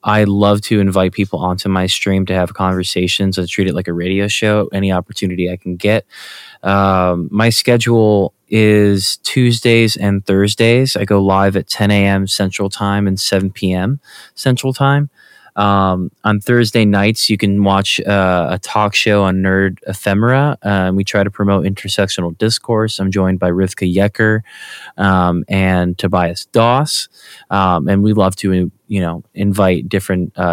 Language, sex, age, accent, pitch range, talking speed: English, male, 20-39, American, 95-110 Hz, 165 wpm